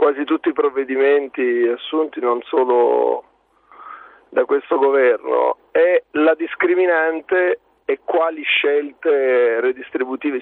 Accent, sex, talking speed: native, male, 100 wpm